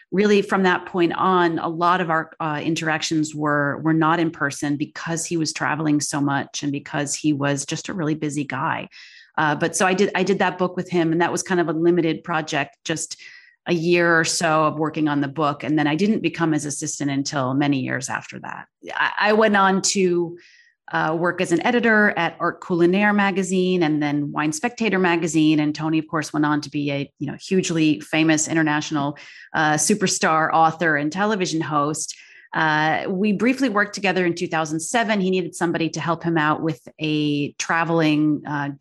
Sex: female